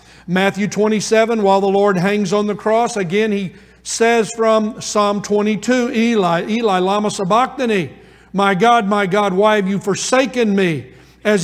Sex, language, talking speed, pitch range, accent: male, English, 150 wpm, 195-225 Hz, American